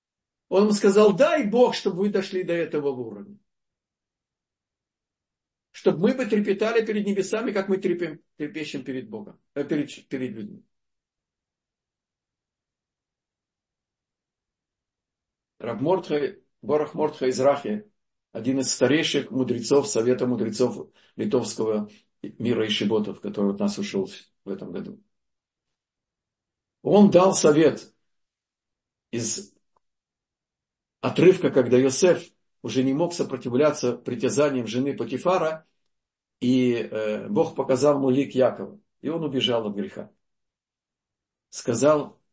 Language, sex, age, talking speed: Russian, male, 50-69, 100 wpm